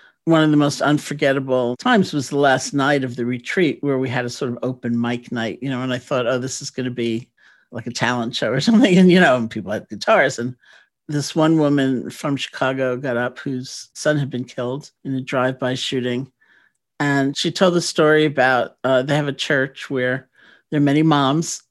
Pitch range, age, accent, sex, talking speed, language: 125-145 Hz, 50-69, American, male, 215 wpm, English